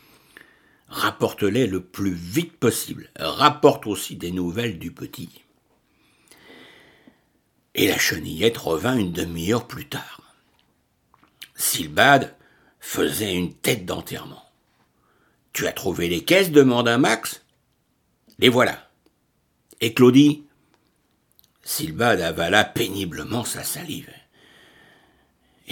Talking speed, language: 105 wpm, French